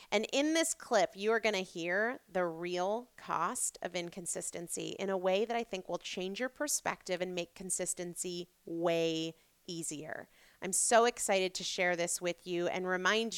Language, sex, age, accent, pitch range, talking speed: English, female, 30-49, American, 185-235 Hz, 175 wpm